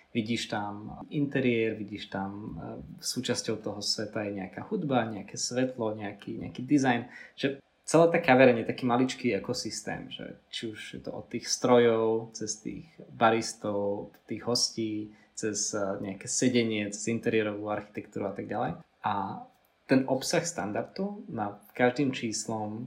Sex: male